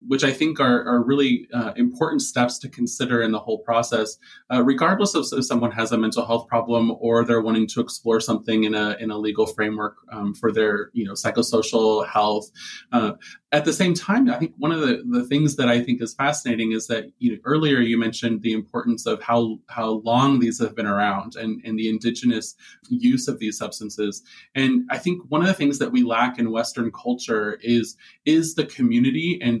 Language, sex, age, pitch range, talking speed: English, male, 20-39, 115-155 Hz, 215 wpm